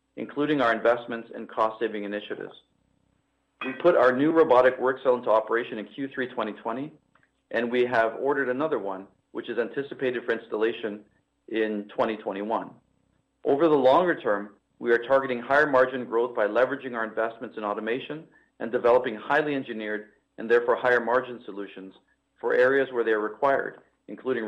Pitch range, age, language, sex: 110-130 Hz, 40-59, English, male